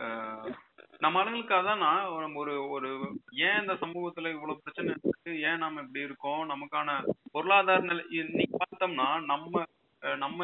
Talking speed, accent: 90 wpm, native